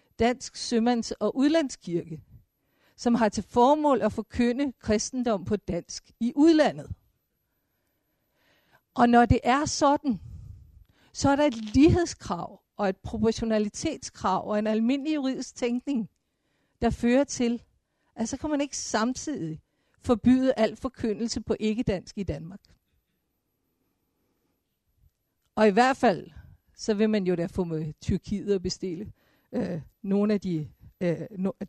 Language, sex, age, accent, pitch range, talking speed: Danish, female, 50-69, native, 195-250 Hz, 125 wpm